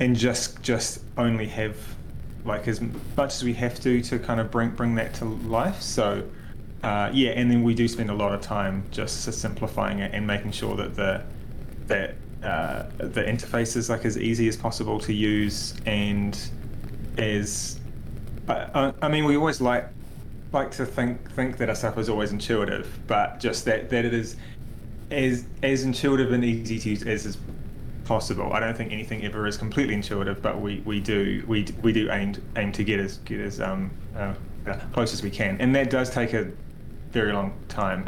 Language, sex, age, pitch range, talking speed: English, male, 20-39, 105-120 Hz, 190 wpm